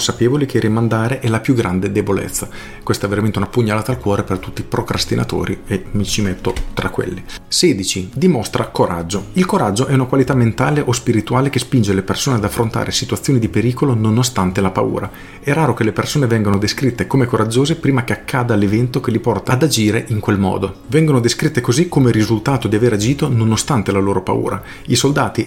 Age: 40-59